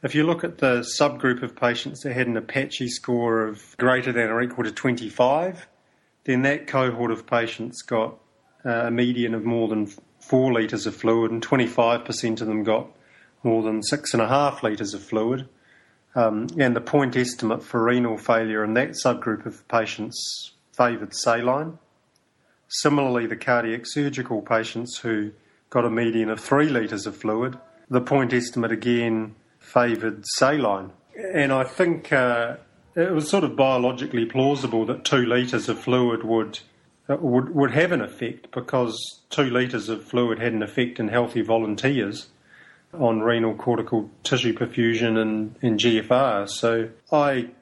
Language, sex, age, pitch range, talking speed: English, male, 40-59, 115-130 Hz, 155 wpm